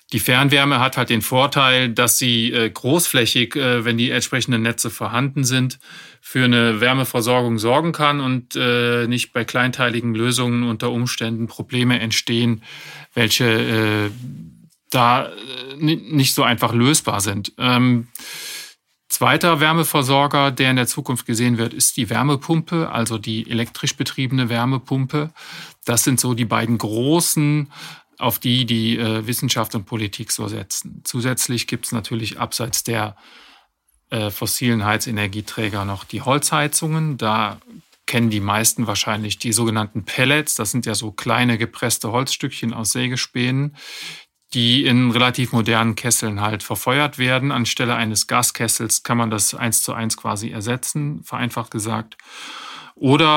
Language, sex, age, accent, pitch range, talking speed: German, male, 40-59, German, 115-130 Hz, 135 wpm